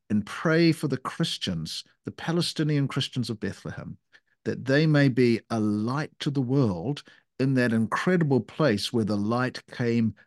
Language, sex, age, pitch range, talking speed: English, male, 50-69, 125-165 Hz, 160 wpm